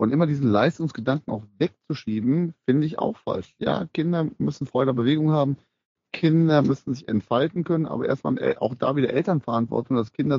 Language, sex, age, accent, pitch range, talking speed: German, male, 30-49, German, 115-145 Hz, 175 wpm